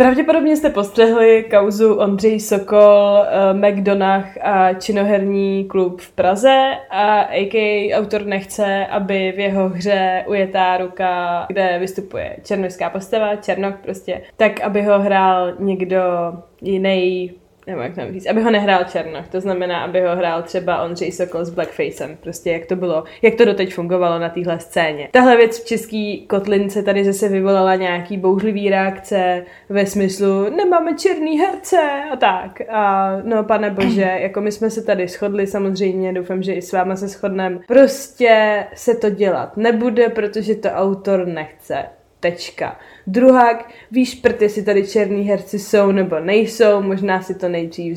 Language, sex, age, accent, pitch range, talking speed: Czech, female, 20-39, native, 185-215 Hz, 155 wpm